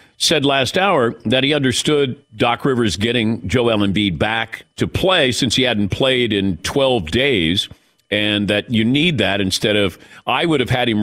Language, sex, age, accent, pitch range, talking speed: English, male, 50-69, American, 100-145 Hz, 180 wpm